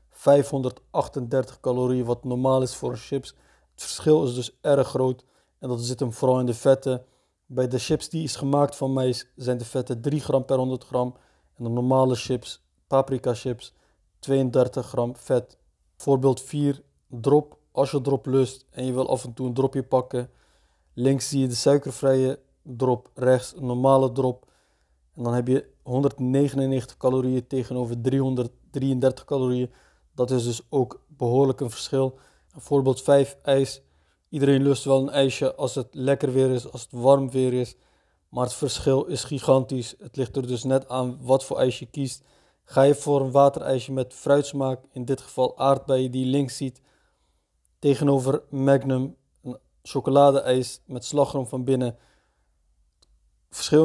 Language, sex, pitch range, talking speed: Dutch, male, 125-140 Hz, 165 wpm